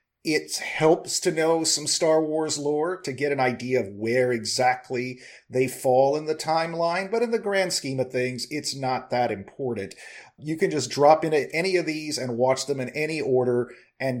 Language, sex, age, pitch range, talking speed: English, male, 40-59, 125-155 Hz, 195 wpm